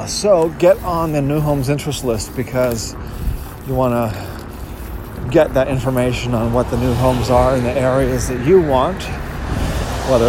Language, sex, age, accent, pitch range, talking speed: English, male, 40-59, American, 110-130 Hz, 165 wpm